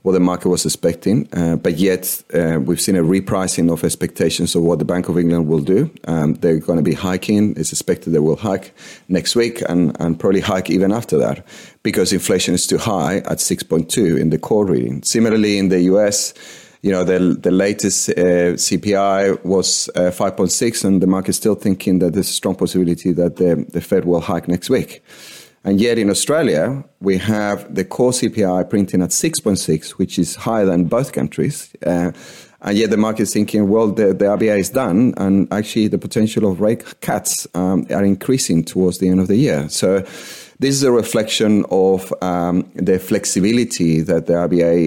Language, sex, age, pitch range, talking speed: English, male, 30-49, 85-100 Hz, 195 wpm